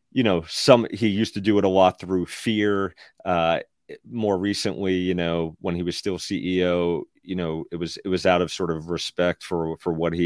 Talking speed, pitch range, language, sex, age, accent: 215 wpm, 90-110 Hz, English, male, 30-49, American